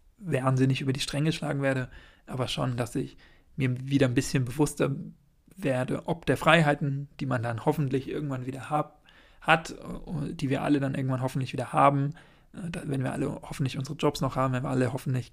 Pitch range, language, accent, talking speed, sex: 130-145 Hz, German, German, 190 wpm, male